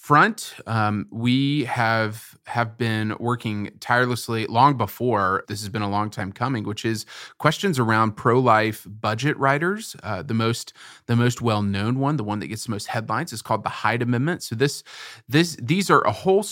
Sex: male